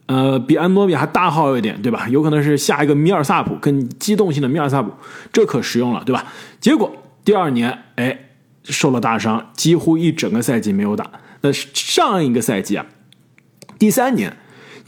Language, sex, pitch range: Chinese, male, 145-220 Hz